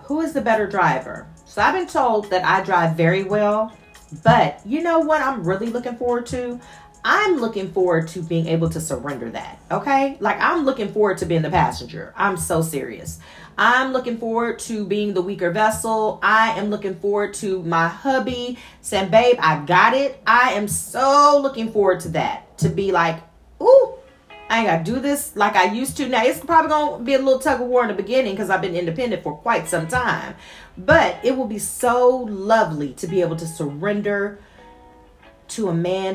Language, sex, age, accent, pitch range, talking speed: English, female, 40-59, American, 170-235 Hz, 200 wpm